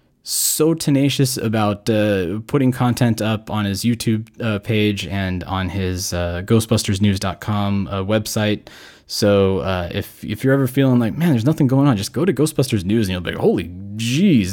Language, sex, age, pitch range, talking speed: English, male, 20-39, 100-130 Hz, 180 wpm